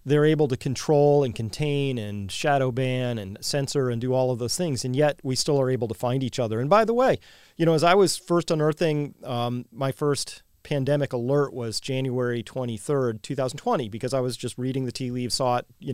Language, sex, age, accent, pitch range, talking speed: English, male, 40-59, American, 120-155 Hz, 220 wpm